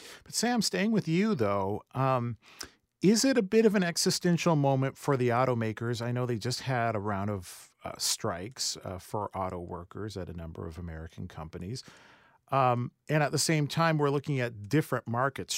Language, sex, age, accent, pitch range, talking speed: English, male, 40-59, American, 100-135 Hz, 190 wpm